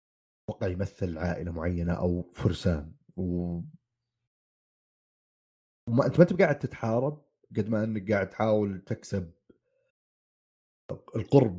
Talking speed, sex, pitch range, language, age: 105 wpm, male, 90-120 Hz, Arabic, 30-49